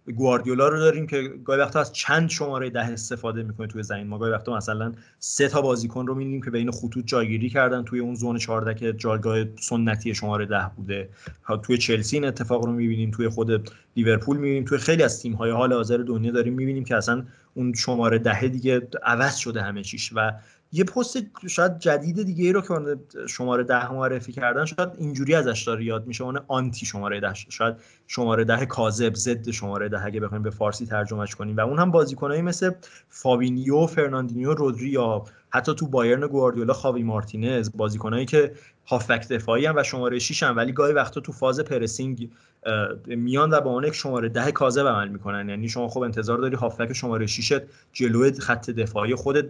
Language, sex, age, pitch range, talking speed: English, male, 30-49, 115-140 Hz, 185 wpm